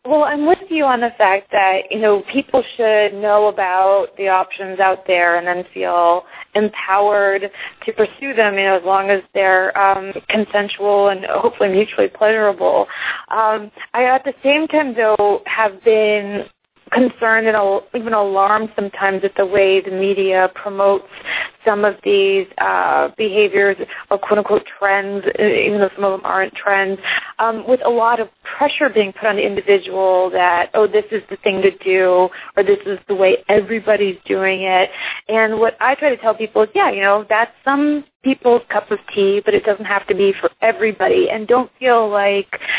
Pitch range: 195-225 Hz